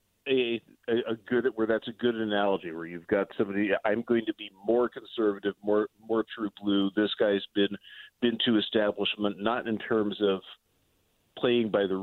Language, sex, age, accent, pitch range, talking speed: English, male, 40-59, American, 100-125 Hz, 175 wpm